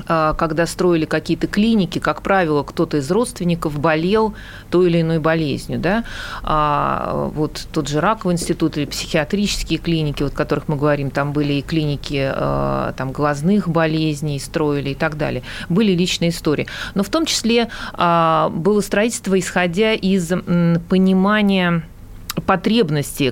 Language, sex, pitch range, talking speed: Russian, female, 150-190 Hz, 125 wpm